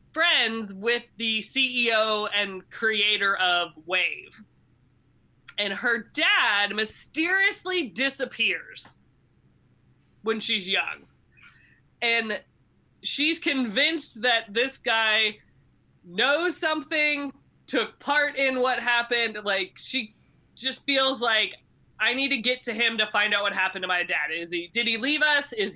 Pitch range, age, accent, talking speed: 205-270 Hz, 20-39, American, 130 wpm